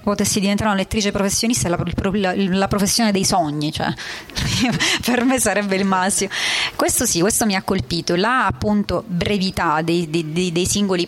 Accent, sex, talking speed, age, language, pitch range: native, female, 175 wpm, 30-49, Italian, 195-235 Hz